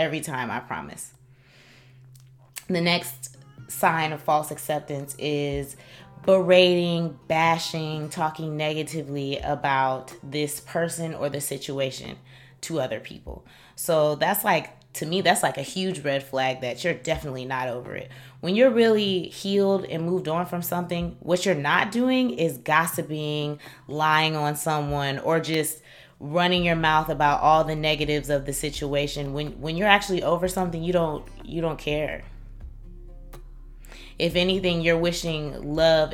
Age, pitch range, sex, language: 20-39, 145-170 Hz, female, English